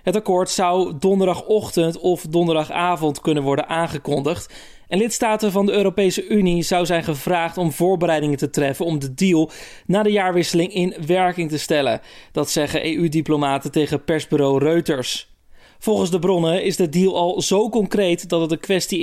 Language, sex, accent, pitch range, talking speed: Dutch, male, Dutch, 160-190 Hz, 160 wpm